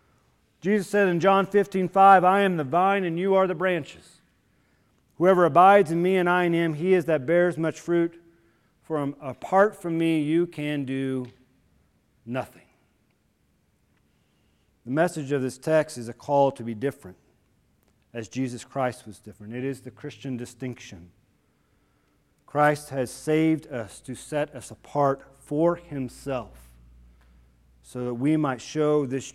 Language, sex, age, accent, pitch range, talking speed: English, male, 40-59, American, 115-160 Hz, 150 wpm